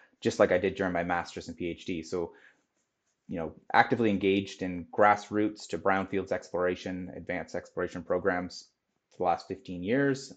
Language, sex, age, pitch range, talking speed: English, male, 30-49, 90-105 Hz, 155 wpm